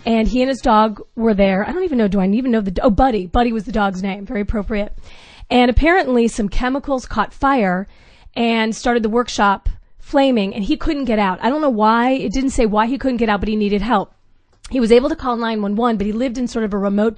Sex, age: female, 30-49